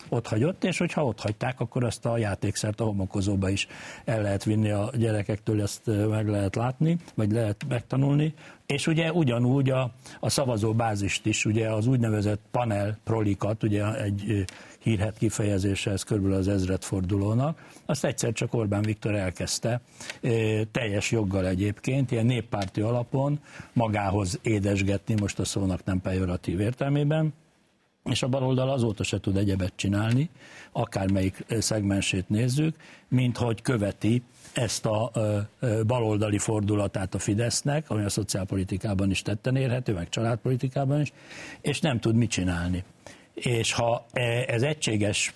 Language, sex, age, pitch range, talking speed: Hungarian, male, 60-79, 100-125 Hz, 135 wpm